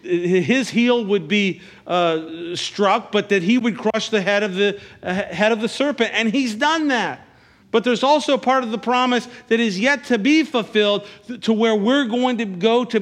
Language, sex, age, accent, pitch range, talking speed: English, male, 50-69, American, 185-240 Hz, 205 wpm